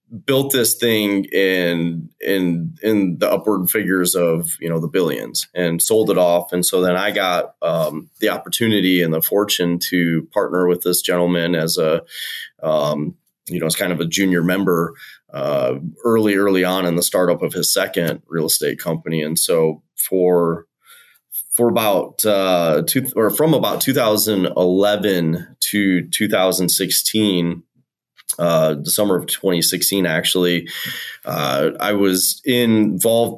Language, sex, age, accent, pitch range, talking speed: English, male, 30-49, American, 90-110 Hz, 145 wpm